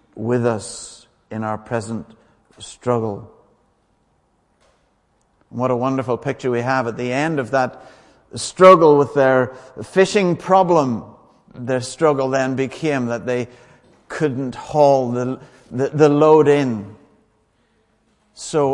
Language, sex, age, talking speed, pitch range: English, male, 60-79, 115 wpm, 115-150 Hz